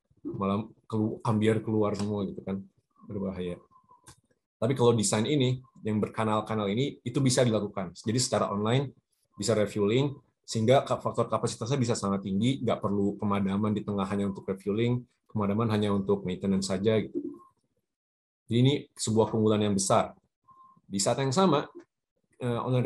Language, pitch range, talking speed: Indonesian, 110-130 Hz, 140 wpm